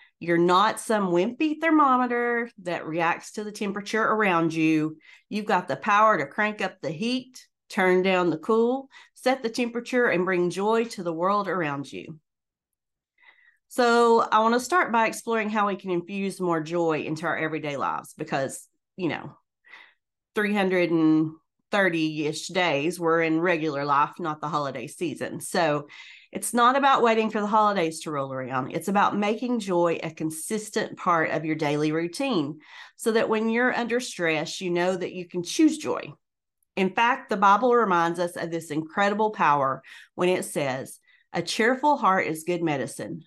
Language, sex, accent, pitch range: English, female, American, 160-220 Hz